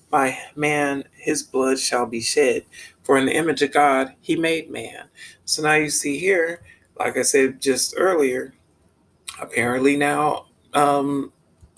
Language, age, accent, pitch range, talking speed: English, 40-59, American, 125-155 Hz, 150 wpm